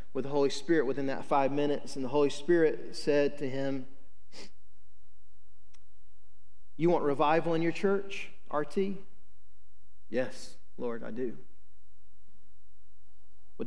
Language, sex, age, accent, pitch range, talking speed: English, male, 40-59, American, 90-145 Hz, 120 wpm